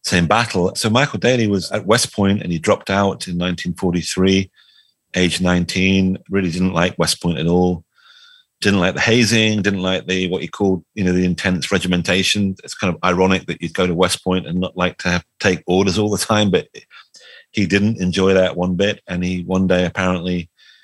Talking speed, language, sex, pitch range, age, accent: 205 wpm, English, male, 90-100 Hz, 30-49, British